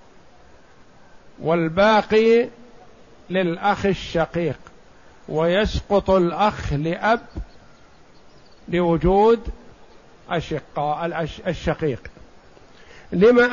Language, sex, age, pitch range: Arabic, male, 50-69, 180-215 Hz